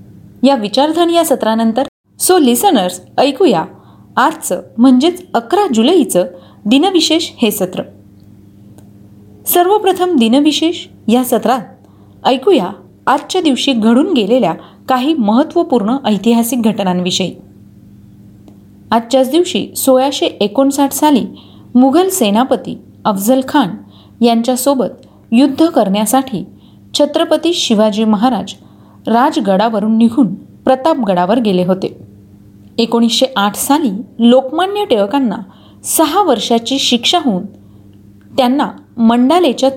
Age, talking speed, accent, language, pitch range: 30-49, 70 wpm, native, Marathi, 185-275 Hz